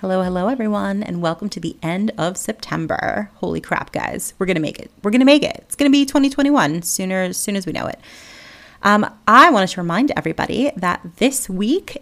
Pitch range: 165-235 Hz